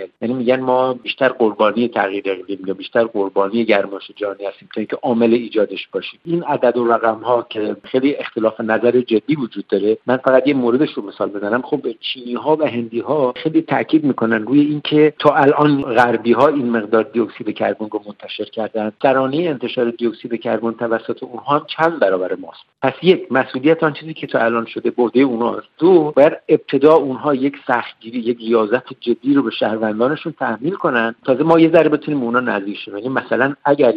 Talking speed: 180 wpm